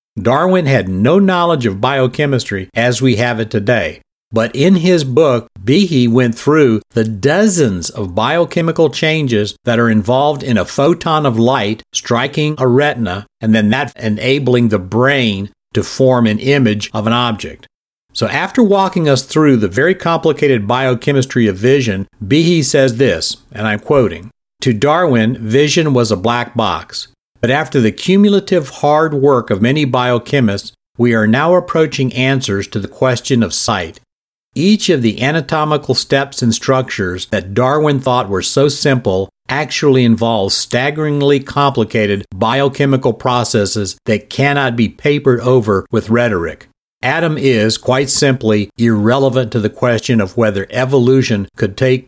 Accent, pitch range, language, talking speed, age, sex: American, 110-140 Hz, English, 150 wpm, 50-69, male